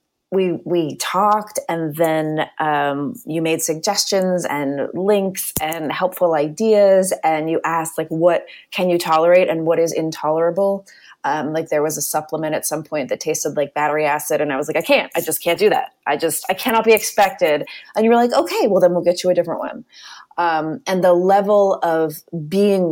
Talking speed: 200 wpm